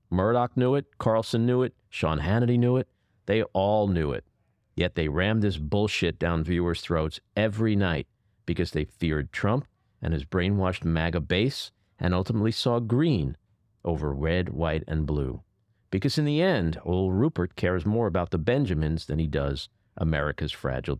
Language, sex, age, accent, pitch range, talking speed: English, male, 50-69, American, 80-110 Hz, 165 wpm